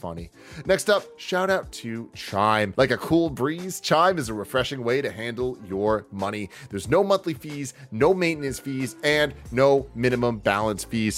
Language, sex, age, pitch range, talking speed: English, male, 30-49, 105-140 Hz, 170 wpm